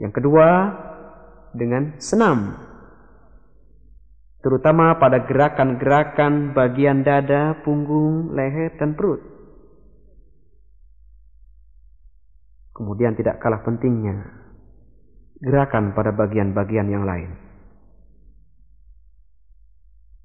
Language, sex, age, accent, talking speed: Indonesian, male, 40-59, native, 65 wpm